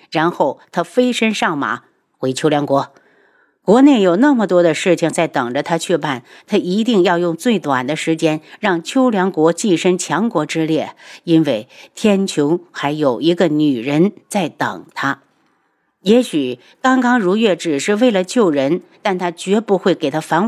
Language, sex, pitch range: Chinese, female, 150-220 Hz